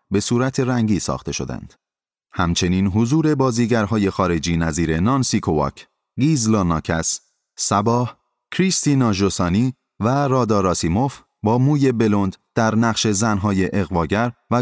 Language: Persian